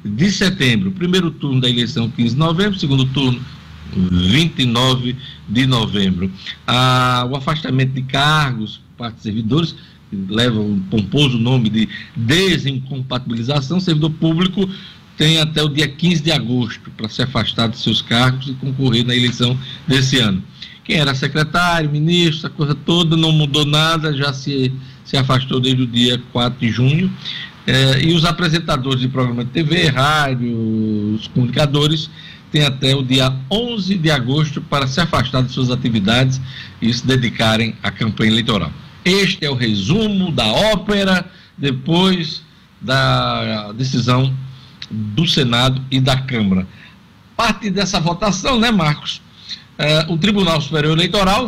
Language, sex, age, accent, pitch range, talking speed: Portuguese, male, 60-79, Brazilian, 125-170 Hz, 140 wpm